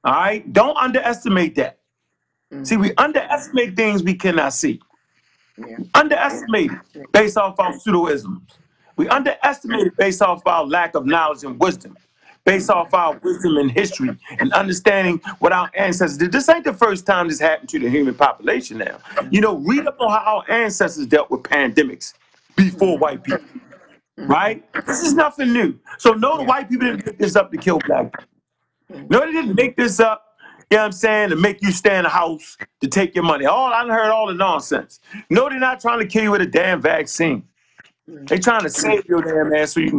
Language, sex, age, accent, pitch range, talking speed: English, male, 40-59, American, 165-235 Hz, 205 wpm